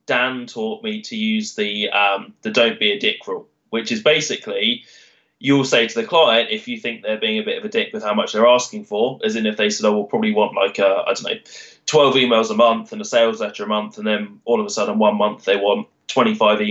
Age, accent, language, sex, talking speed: 20-39, British, English, male, 260 wpm